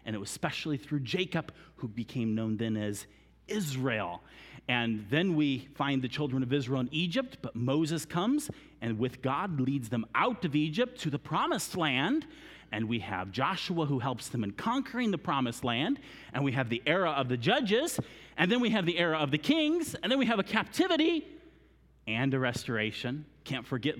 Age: 40-59